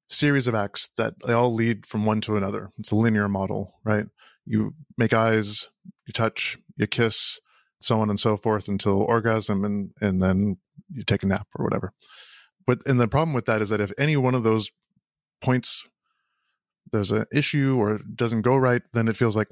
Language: English